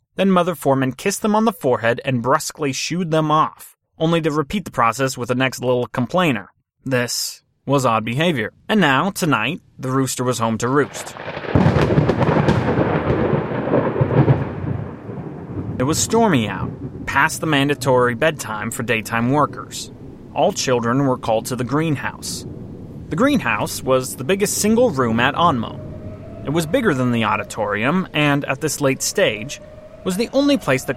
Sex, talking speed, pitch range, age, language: male, 155 wpm, 120-155 Hz, 30-49, English